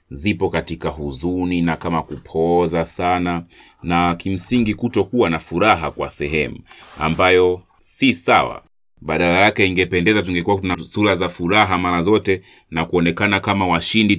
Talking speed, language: 125 wpm, Swahili